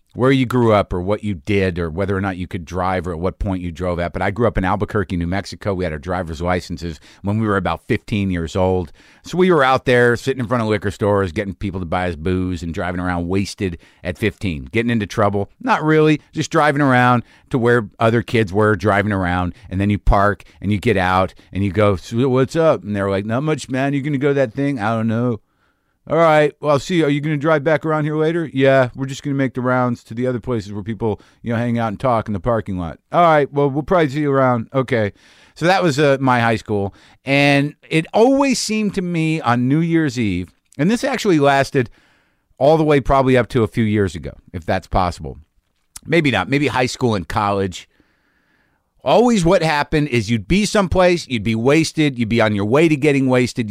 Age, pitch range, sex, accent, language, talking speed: 50-69, 95-145 Hz, male, American, English, 240 wpm